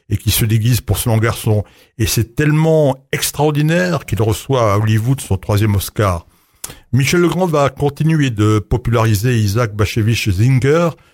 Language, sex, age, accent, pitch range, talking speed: French, male, 60-79, French, 110-135 Hz, 150 wpm